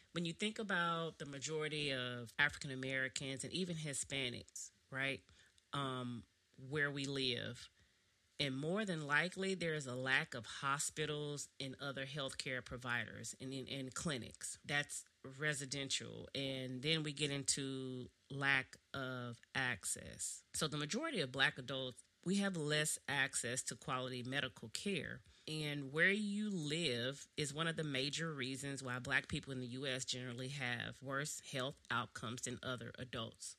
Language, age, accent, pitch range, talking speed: English, 40-59, American, 125-150 Hz, 150 wpm